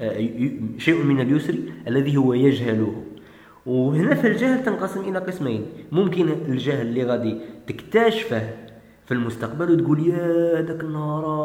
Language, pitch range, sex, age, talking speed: Arabic, 115-155 Hz, male, 20-39, 120 wpm